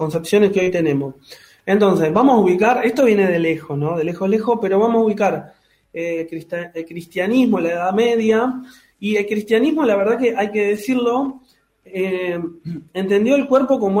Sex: male